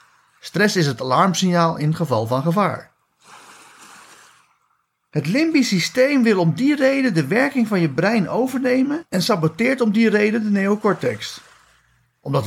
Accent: Dutch